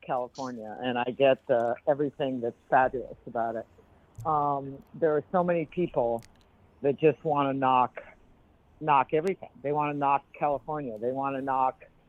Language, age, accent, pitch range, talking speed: English, 60-79, American, 125-155 Hz, 160 wpm